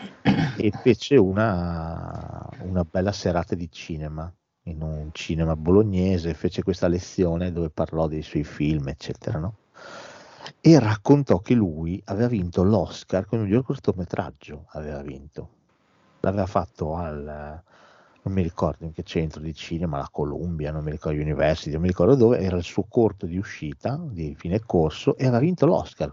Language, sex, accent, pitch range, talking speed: Italian, male, native, 80-100 Hz, 160 wpm